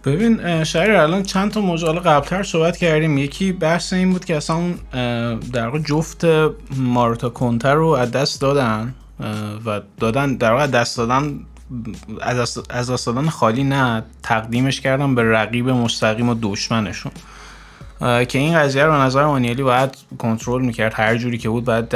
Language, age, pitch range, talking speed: Persian, 20-39, 115-145 Hz, 140 wpm